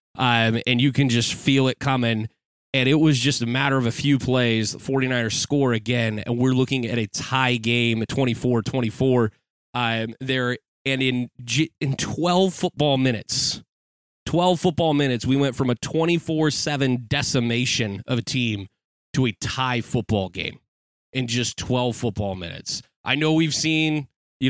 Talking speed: 160 wpm